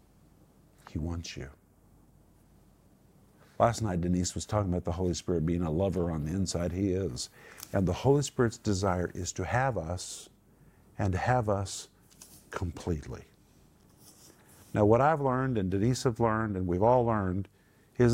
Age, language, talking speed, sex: 50-69, English, 155 wpm, male